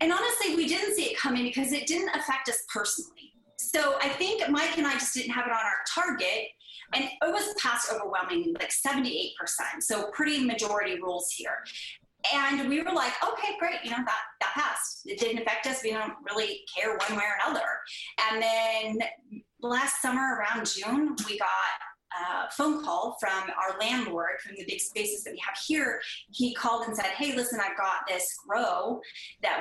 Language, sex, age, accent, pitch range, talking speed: English, female, 30-49, American, 215-300 Hz, 190 wpm